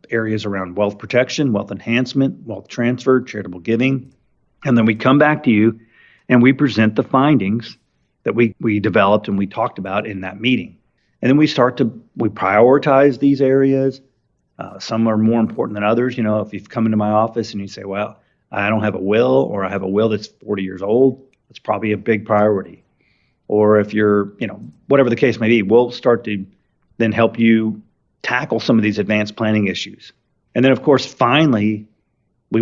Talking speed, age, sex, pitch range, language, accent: 200 wpm, 40-59, male, 105-120 Hz, English, American